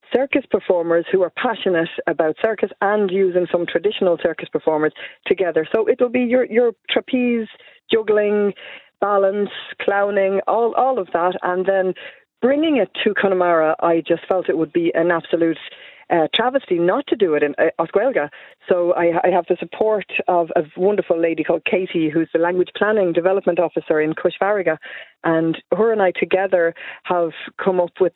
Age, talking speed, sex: 40-59, 170 wpm, female